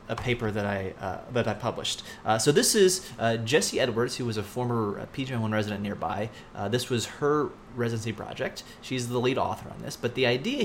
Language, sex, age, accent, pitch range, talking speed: English, male, 30-49, American, 110-135 Hz, 220 wpm